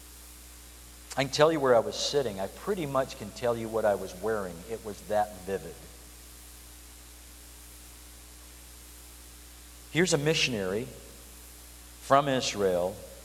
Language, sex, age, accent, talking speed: English, male, 50-69, American, 120 wpm